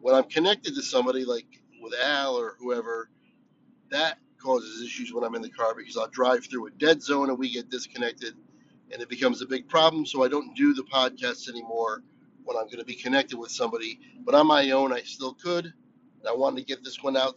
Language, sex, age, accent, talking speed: English, male, 40-59, American, 225 wpm